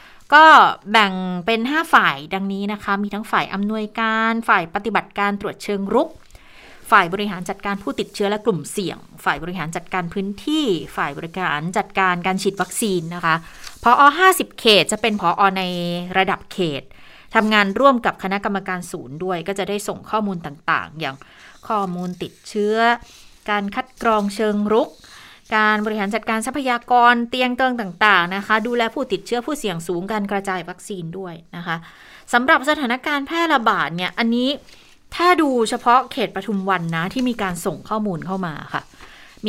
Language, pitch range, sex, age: Thai, 180-225 Hz, female, 30-49